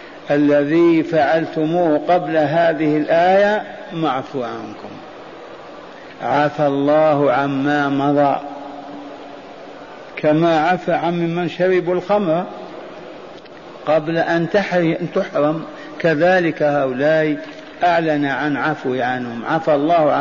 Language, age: Arabic, 50-69